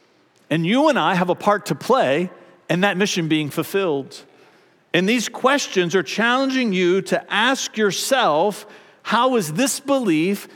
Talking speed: 155 wpm